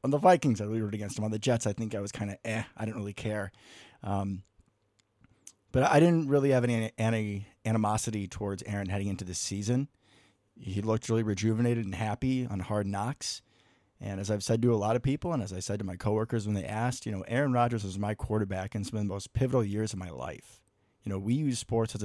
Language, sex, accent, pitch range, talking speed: English, male, American, 100-120 Hz, 240 wpm